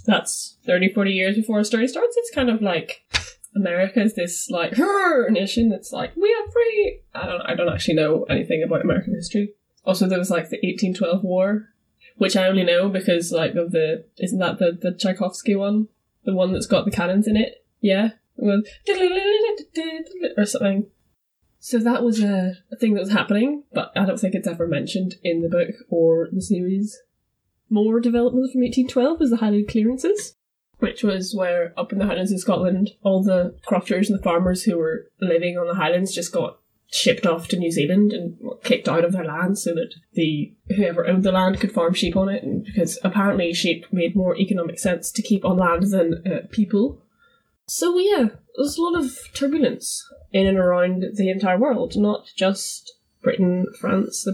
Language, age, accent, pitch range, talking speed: English, 10-29, British, 180-240 Hz, 190 wpm